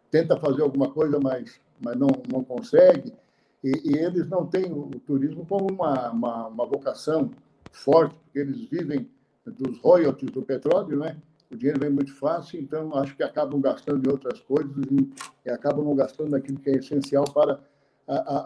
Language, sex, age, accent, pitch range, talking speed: Portuguese, male, 60-79, Brazilian, 135-155 Hz, 170 wpm